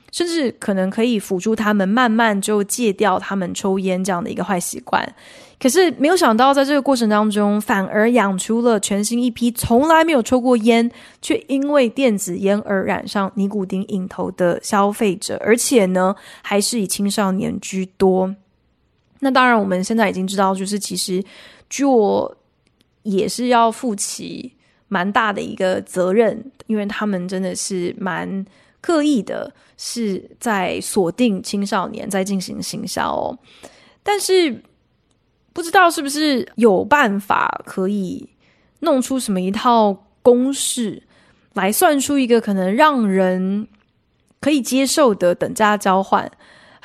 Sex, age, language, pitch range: female, 20-39, Chinese, 195-250 Hz